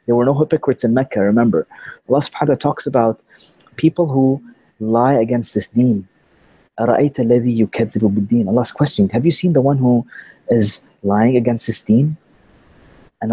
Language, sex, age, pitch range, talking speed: English, male, 30-49, 115-145 Hz, 150 wpm